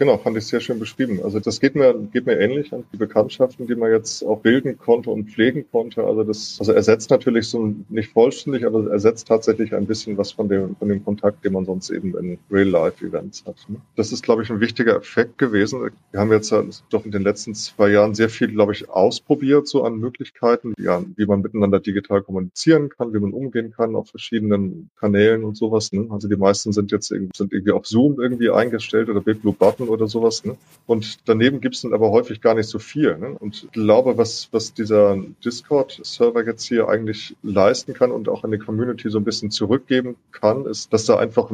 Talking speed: 215 wpm